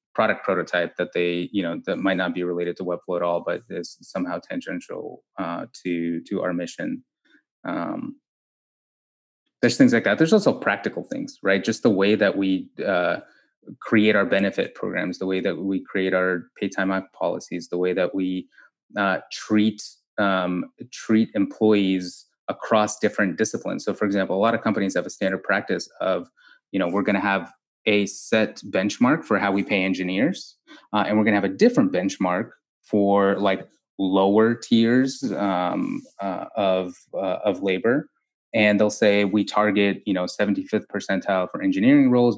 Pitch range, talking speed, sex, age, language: 90-110 Hz, 175 wpm, male, 20-39, English